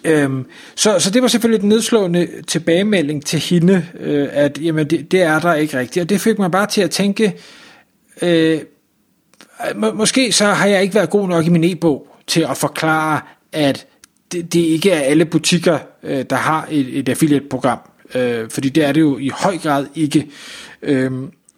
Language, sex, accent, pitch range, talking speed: Danish, male, native, 150-195 Hz, 190 wpm